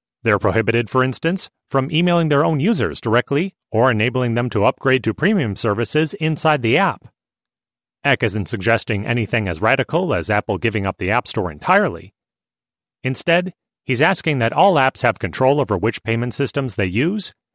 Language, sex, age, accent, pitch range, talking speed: English, male, 30-49, American, 115-160 Hz, 170 wpm